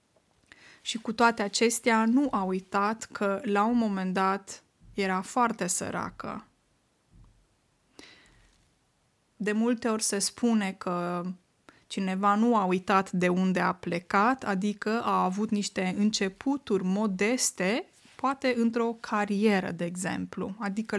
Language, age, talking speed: Romanian, 20-39, 115 wpm